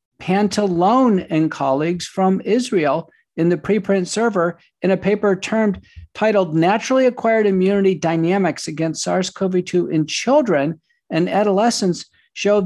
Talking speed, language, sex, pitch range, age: 120 wpm, English, male, 170-220 Hz, 50-69